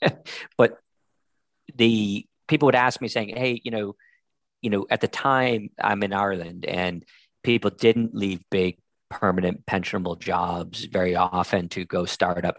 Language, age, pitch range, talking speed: English, 40-59, 90-110 Hz, 155 wpm